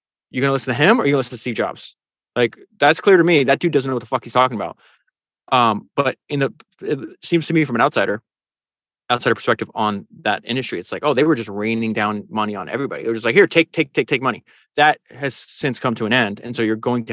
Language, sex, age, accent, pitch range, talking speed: English, male, 20-39, American, 115-160 Hz, 275 wpm